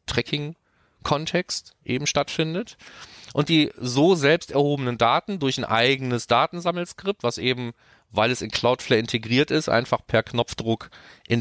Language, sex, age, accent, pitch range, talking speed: German, male, 30-49, German, 110-140 Hz, 130 wpm